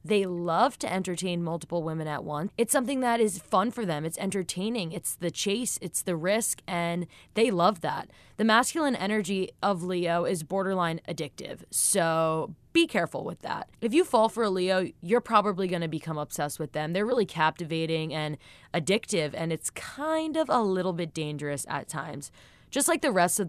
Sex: female